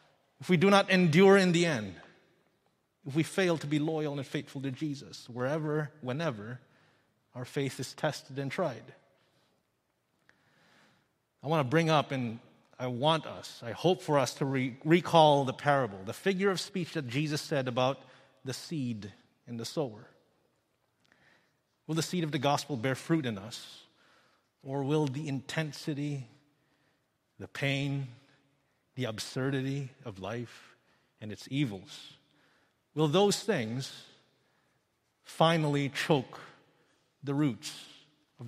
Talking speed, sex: 135 wpm, male